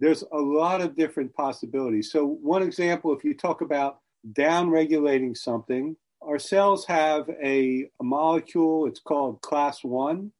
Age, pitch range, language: 50-69, 140-185 Hz, English